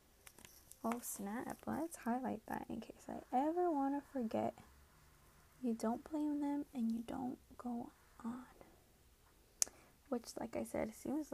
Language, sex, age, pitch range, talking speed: English, female, 10-29, 215-270 Hz, 140 wpm